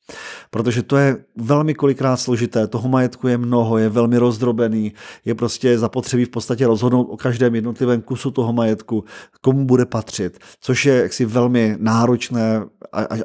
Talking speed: 155 wpm